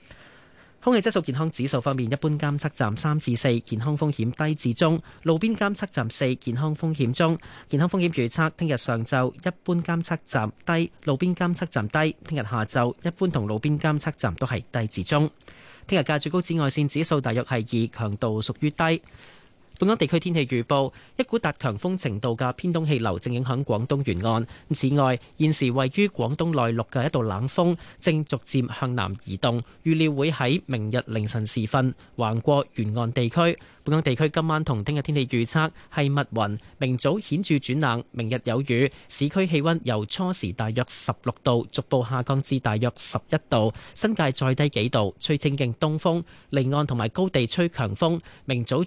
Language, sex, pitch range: Chinese, male, 120-155 Hz